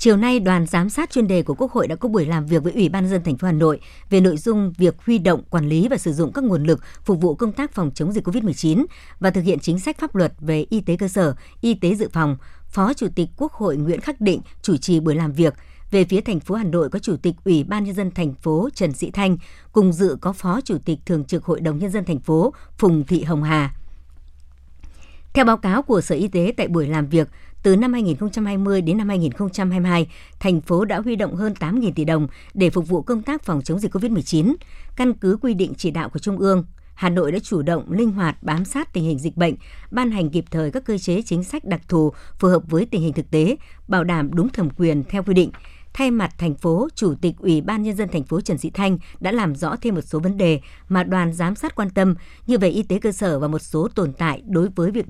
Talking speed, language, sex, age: 260 wpm, Vietnamese, male, 60-79